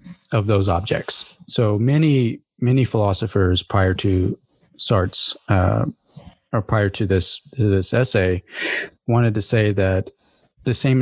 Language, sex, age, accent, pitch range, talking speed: English, male, 40-59, American, 100-130 Hz, 125 wpm